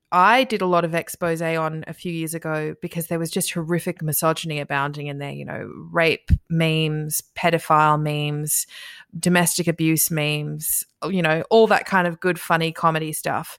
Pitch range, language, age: 165-205 Hz, English, 20-39